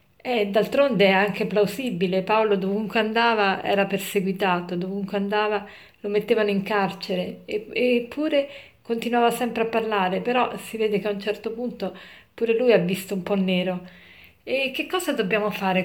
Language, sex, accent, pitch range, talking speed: Italian, female, native, 200-235 Hz, 160 wpm